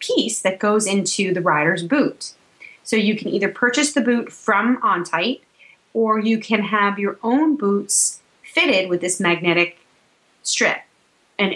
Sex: female